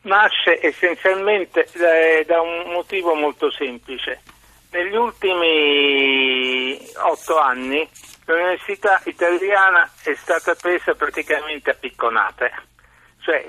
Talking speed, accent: 95 wpm, native